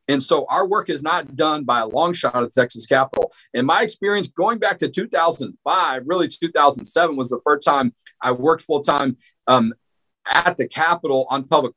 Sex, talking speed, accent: male, 190 wpm, American